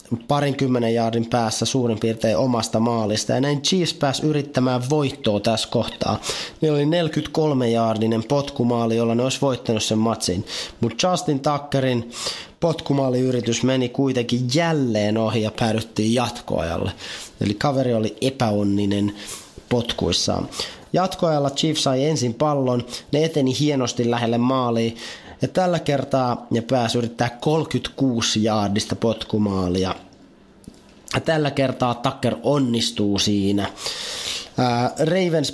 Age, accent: 30-49, native